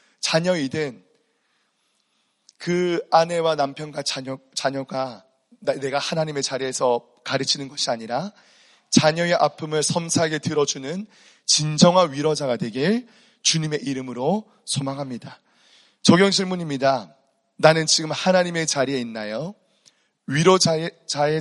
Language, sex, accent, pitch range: Korean, male, native, 135-175 Hz